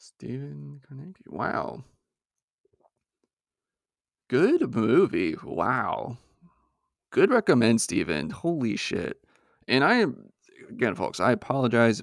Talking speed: 90 wpm